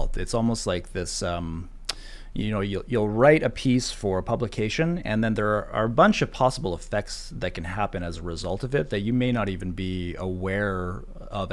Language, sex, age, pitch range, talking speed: English, male, 30-49, 95-120 Hz, 215 wpm